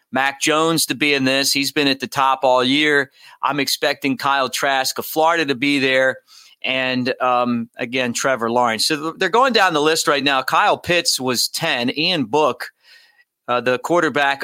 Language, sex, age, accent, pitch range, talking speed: English, male, 40-59, American, 125-145 Hz, 185 wpm